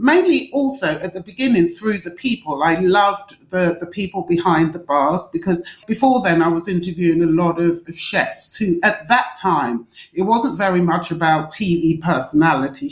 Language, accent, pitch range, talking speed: English, British, 165-200 Hz, 175 wpm